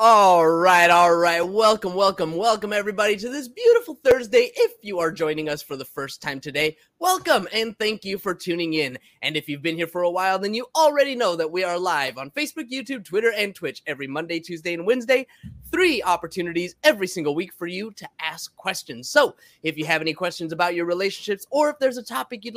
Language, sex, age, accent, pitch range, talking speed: English, male, 20-39, American, 160-230 Hz, 215 wpm